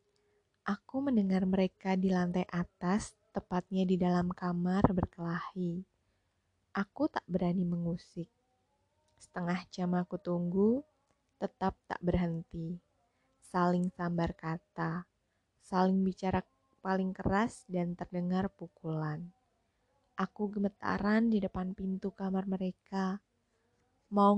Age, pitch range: 20-39, 175-205 Hz